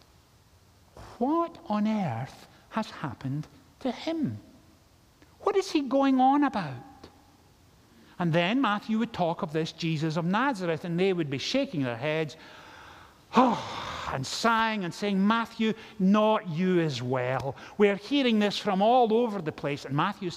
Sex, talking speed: male, 145 wpm